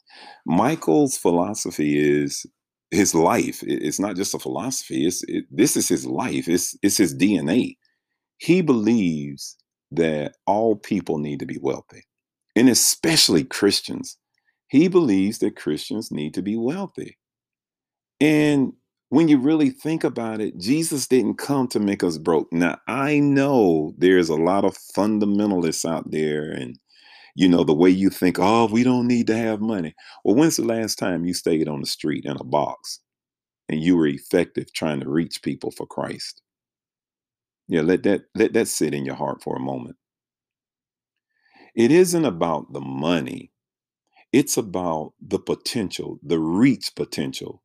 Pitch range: 75-125 Hz